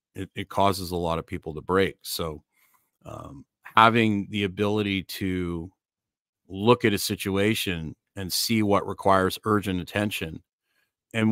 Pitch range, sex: 90-105 Hz, male